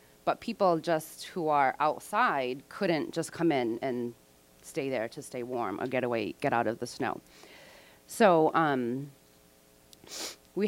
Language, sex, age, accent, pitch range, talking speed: English, female, 30-49, American, 130-160 Hz, 150 wpm